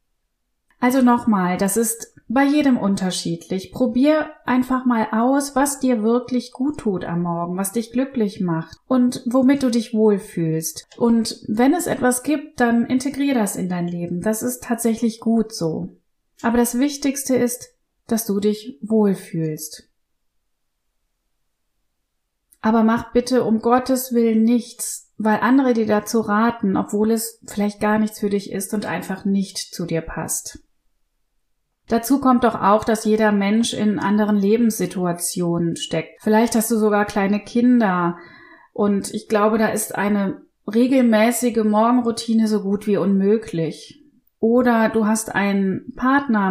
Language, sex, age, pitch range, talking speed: German, female, 30-49, 200-245 Hz, 145 wpm